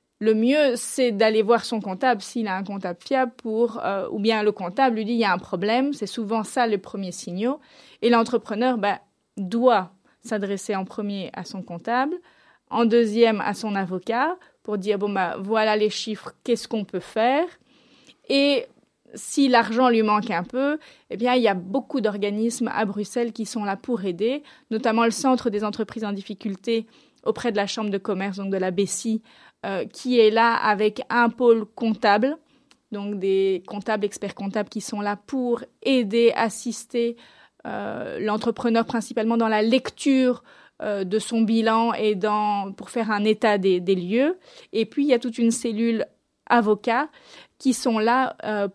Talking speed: 180 wpm